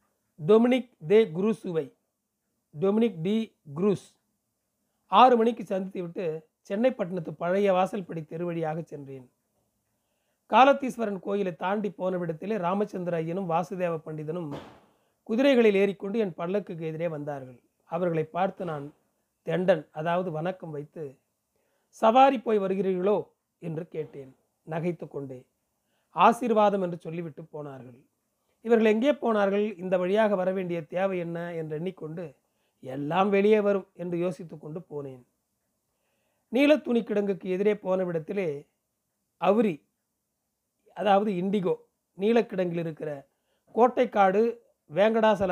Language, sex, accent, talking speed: Tamil, male, native, 105 wpm